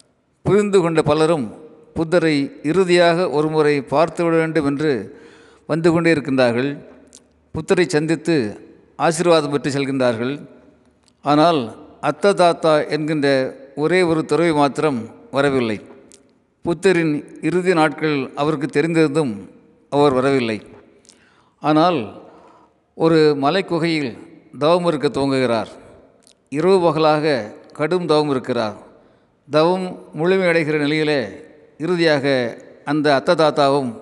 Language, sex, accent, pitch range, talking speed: Tamil, male, native, 140-165 Hz, 90 wpm